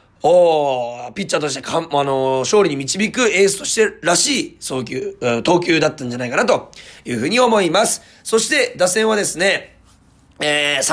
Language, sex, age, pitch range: Japanese, male, 40-59, 145-220 Hz